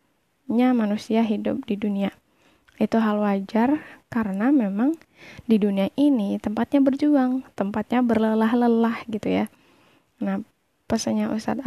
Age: 10-29